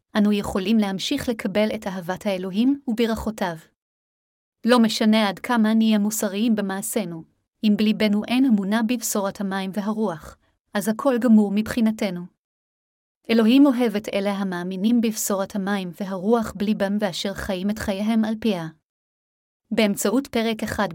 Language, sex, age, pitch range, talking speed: Hebrew, female, 30-49, 195-230 Hz, 125 wpm